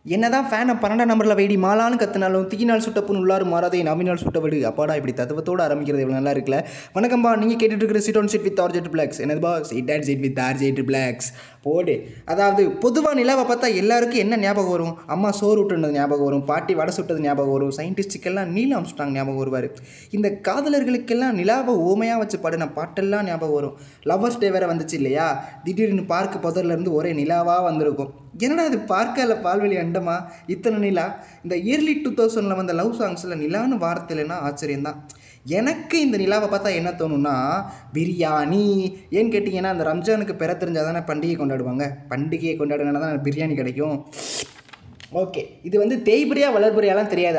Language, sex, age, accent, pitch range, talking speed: Tamil, male, 20-39, native, 150-210 Hz, 150 wpm